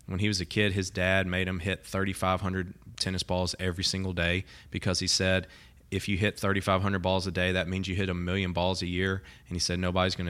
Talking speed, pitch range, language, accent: 235 wpm, 90-95 Hz, English, American